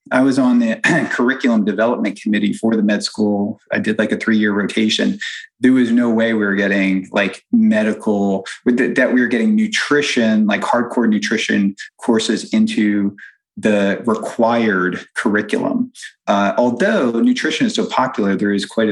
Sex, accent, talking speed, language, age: male, American, 150 wpm, English, 30-49